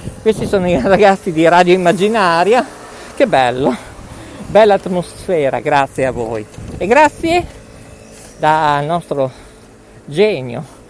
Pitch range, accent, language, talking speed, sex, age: 140-225 Hz, native, Italian, 105 wpm, male, 50-69